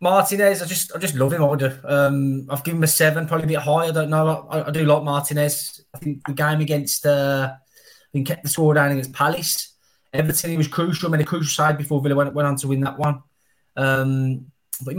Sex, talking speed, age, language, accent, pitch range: male, 240 wpm, 20-39, English, British, 140-165 Hz